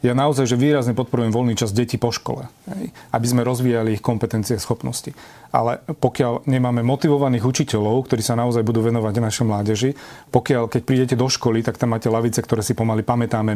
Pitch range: 115-125 Hz